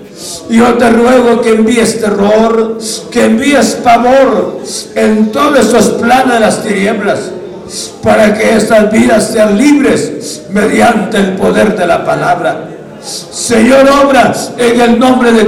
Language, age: Spanish, 60-79